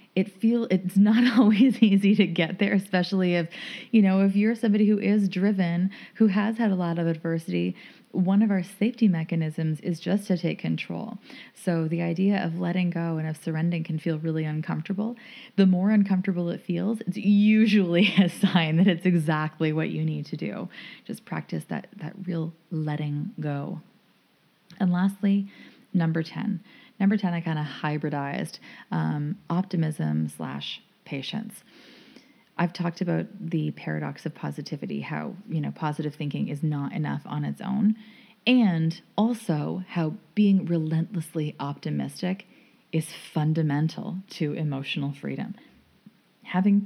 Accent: American